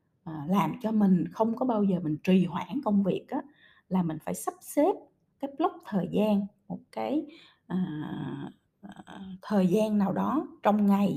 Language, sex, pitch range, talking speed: Vietnamese, female, 185-250 Hz, 155 wpm